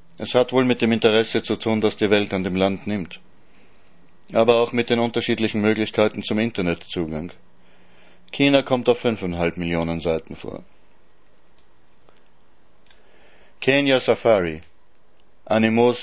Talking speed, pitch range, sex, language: 125 wpm, 90-115 Hz, male, German